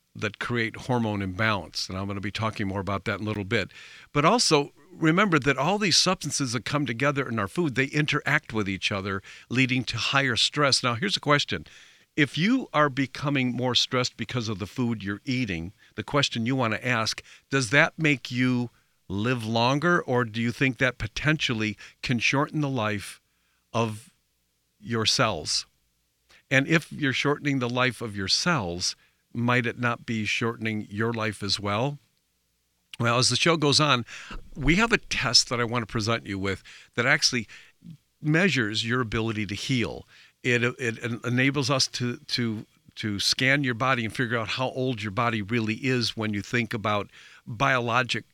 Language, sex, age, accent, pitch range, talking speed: English, male, 50-69, American, 105-135 Hz, 180 wpm